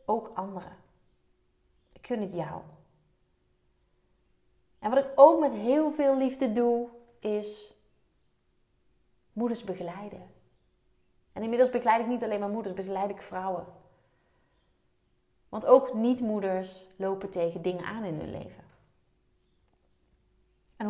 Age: 30-49